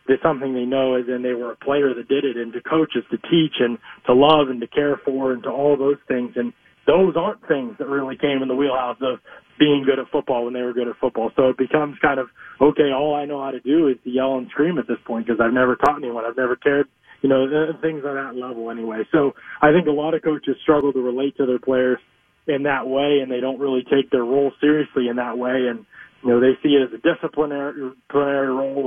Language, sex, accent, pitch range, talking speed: English, male, American, 130-150 Hz, 255 wpm